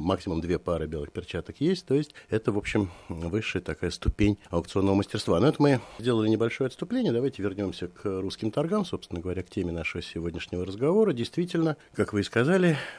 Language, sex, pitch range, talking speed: Russian, male, 85-115 Hz, 180 wpm